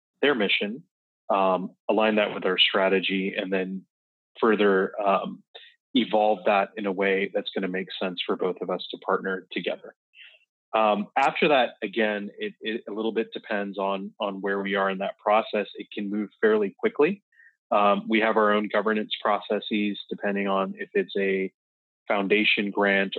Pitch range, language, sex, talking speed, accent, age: 95-110 Hz, English, male, 170 wpm, American, 20-39